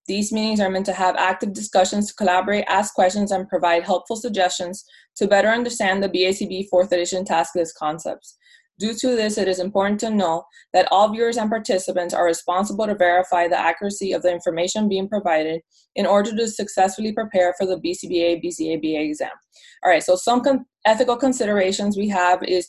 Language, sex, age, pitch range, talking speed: English, female, 20-39, 185-220 Hz, 180 wpm